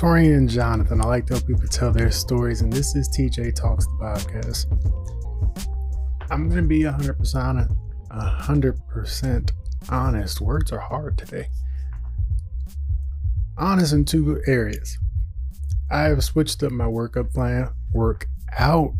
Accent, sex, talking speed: American, male, 135 wpm